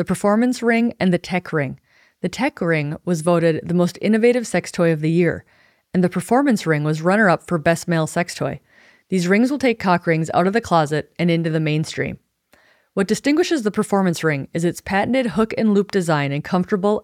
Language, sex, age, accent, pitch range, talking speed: English, female, 30-49, American, 165-205 Hz, 210 wpm